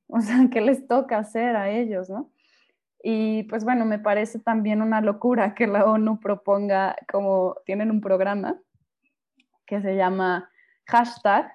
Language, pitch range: Spanish, 195-250 Hz